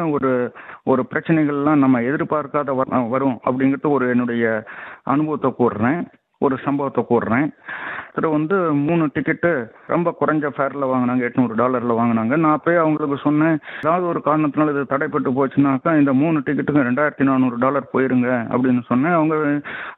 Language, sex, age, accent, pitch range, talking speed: Tamil, male, 50-69, native, 125-150 Hz, 130 wpm